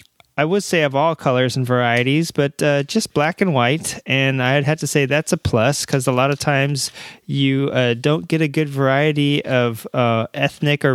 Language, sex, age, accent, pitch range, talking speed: English, male, 30-49, American, 125-160 Hz, 210 wpm